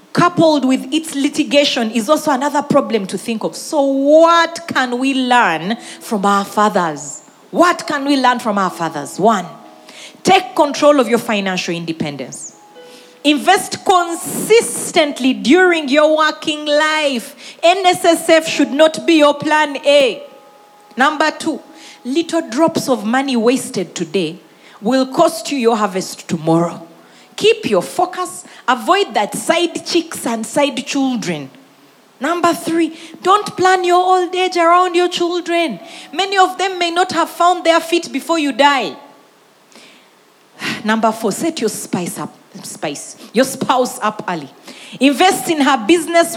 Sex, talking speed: female, 140 wpm